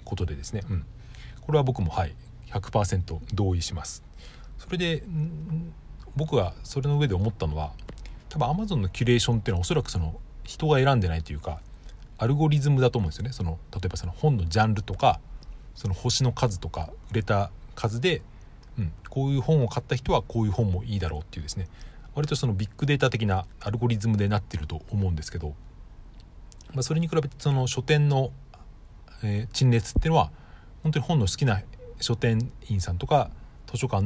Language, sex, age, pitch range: Japanese, male, 40-59, 95-130 Hz